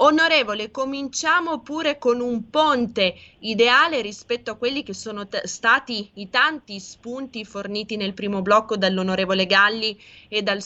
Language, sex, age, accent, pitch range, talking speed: Italian, female, 20-39, native, 185-230 Hz, 140 wpm